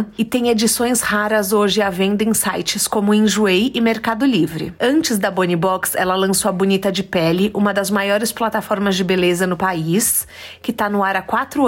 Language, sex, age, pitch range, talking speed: Portuguese, female, 30-49, 195-235 Hz, 195 wpm